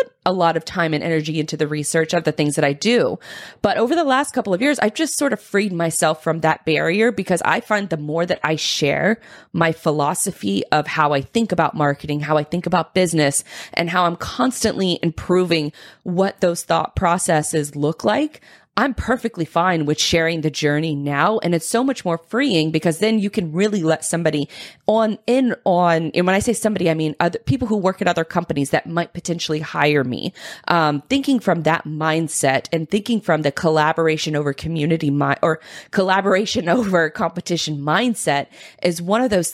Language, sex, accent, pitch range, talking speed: English, female, American, 155-190 Hz, 195 wpm